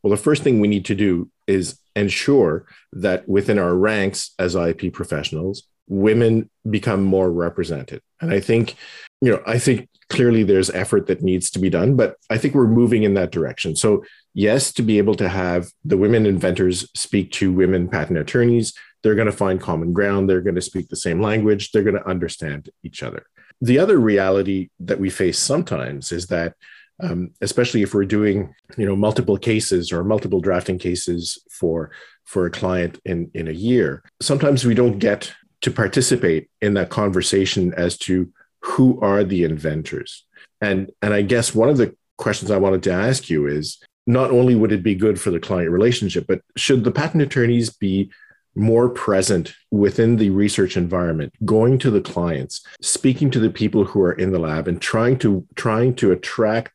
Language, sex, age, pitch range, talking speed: English, male, 40-59, 90-115 Hz, 190 wpm